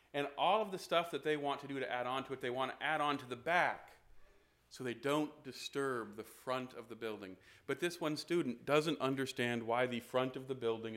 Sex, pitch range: male, 115-155 Hz